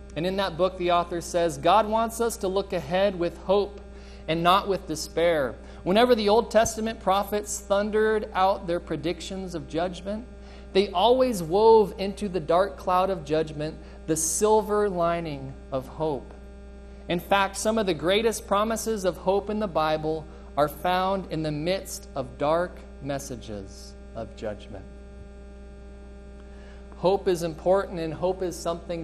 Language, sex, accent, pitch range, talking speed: English, male, American, 155-195 Hz, 150 wpm